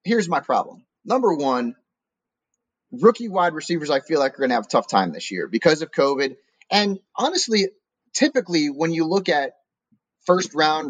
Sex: male